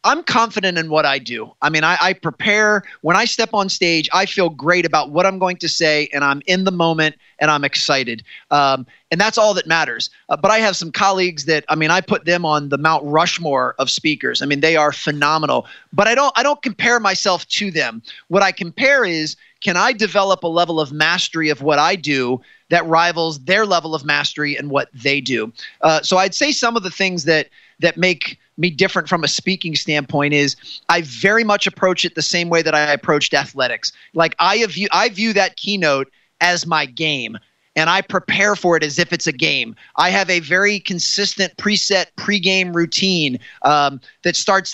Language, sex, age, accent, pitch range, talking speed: English, male, 30-49, American, 155-190 Hz, 210 wpm